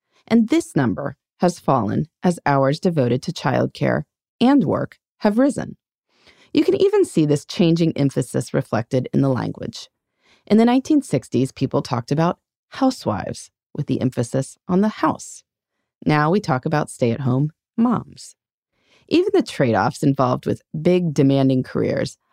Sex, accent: female, American